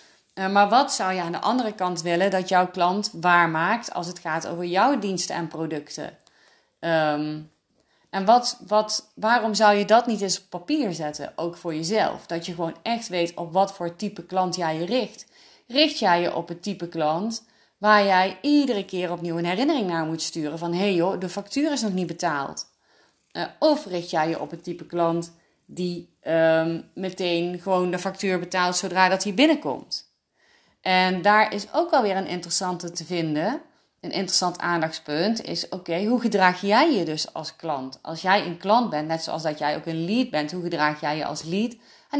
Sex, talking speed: female, 200 wpm